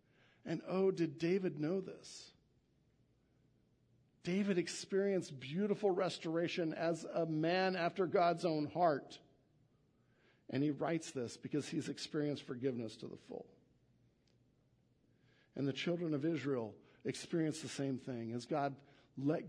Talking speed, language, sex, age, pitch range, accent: 125 wpm, English, male, 50-69, 135-185 Hz, American